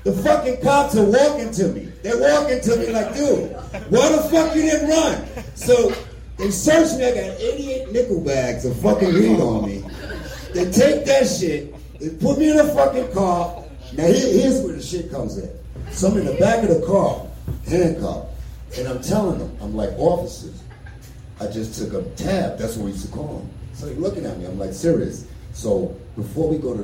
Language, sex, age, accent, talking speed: English, male, 40-59, American, 205 wpm